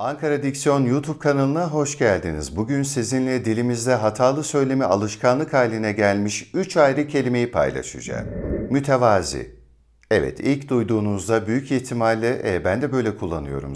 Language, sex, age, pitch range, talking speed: Turkish, male, 60-79, 80-125 Hz, 125 wpm